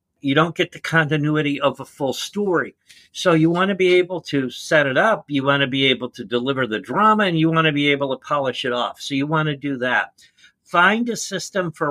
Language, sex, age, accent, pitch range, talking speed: English, male, 50-69, American, 140-180 Hz, 240 wpm